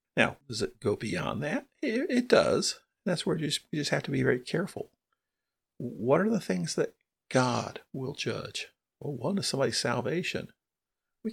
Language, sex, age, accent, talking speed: English, male, 50-69, American, 165 wpm